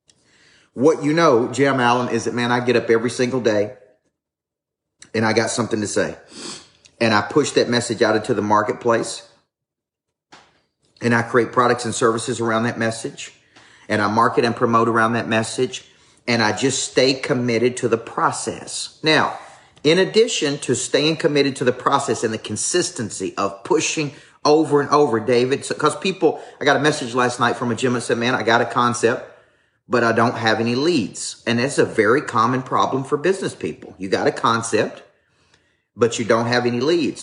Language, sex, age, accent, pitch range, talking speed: English, male, 40-59, American, 115-135 Hz, 185 wpm